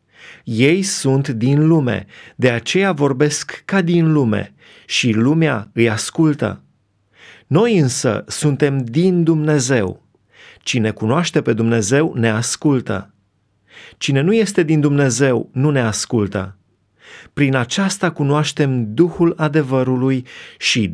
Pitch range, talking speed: 115-155 Hz, 110 wpm